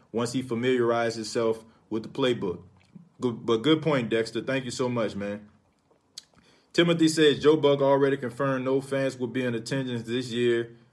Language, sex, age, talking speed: English, male, 20-39, 165 wpm